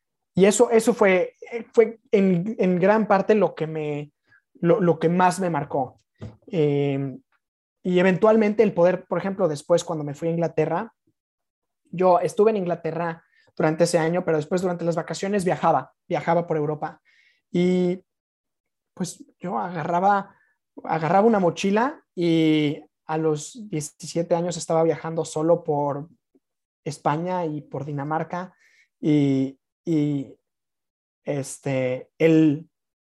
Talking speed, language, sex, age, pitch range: 125 wpm, Spanish, male, 20-39, 160-200 Hz